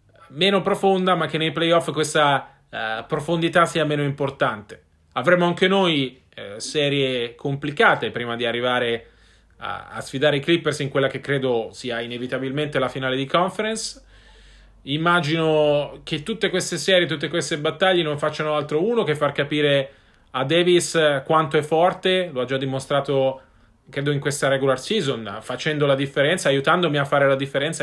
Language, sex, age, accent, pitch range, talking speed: Italian, male, 30-49, native, 135-170 Hz, 155 wpm